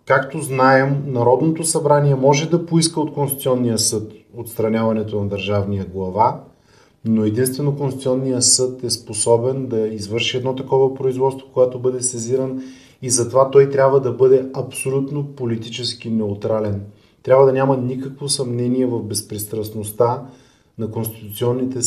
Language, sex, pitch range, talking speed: Bulgarian, male, 110-130 Hz, 125 wpm